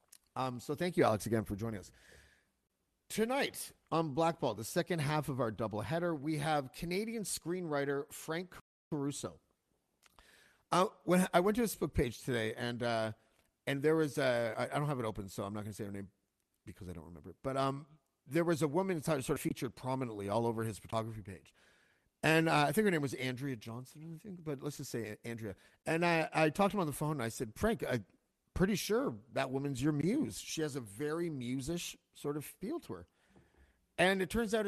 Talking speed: 220 wpm